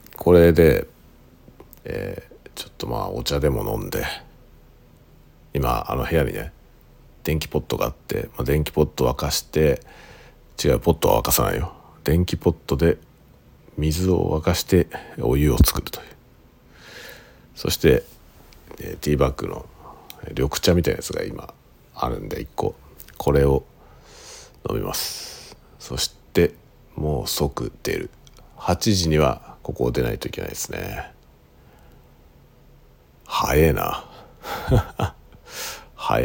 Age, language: 50-69, Japanese